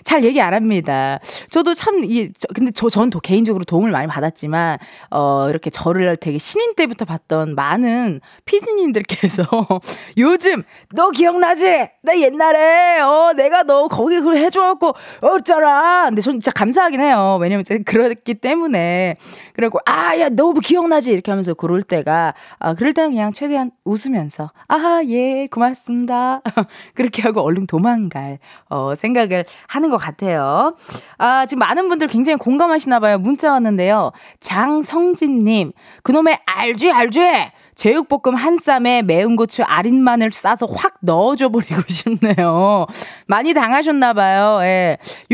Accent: native